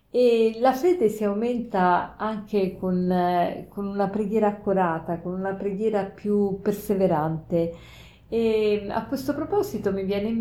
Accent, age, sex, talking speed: native, 40-59, female, 125 wpm